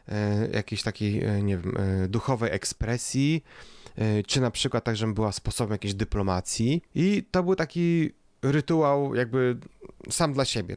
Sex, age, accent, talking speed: male, 30-49, native, 135 wpm